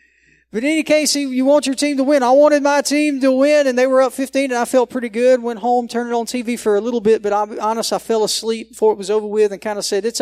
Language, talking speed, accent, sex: English, 305 wpm, American, male